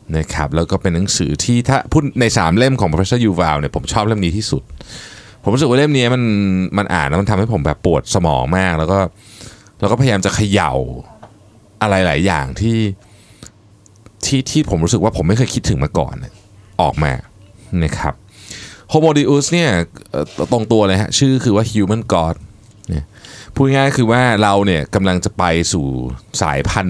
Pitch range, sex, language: 90-115 Hz, male, Thai